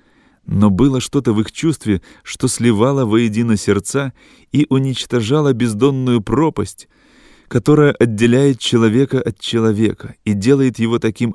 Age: 30-49